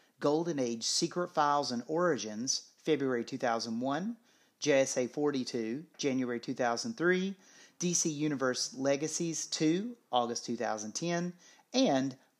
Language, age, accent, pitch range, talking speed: English, 40-59, American, 120-160 Hz, 90 wpm